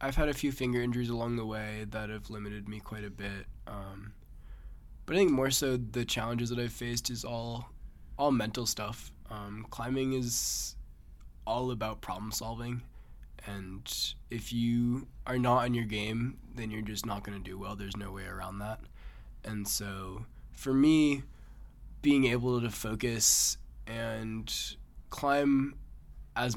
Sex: male